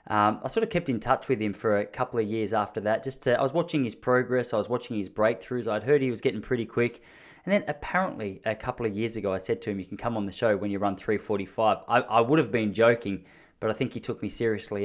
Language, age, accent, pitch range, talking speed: English, 20-39, Australian, 110-130 Hz, 280 wpm